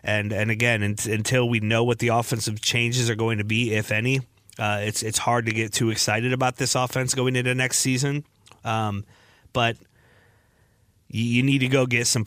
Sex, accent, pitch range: male, American, 110-125 Hz